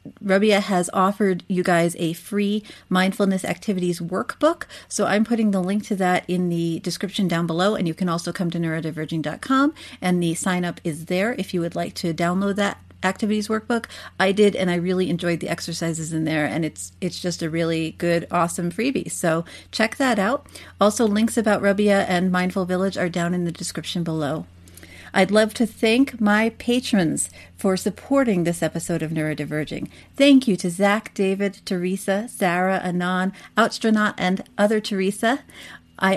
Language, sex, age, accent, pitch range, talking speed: English, female, 40-59, American, 170-220 Hz, 175 wpm